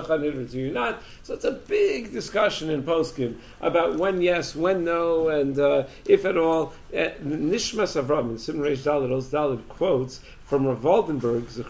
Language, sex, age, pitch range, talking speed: English, male, 50-69, 135-175 Hz, 170 wpm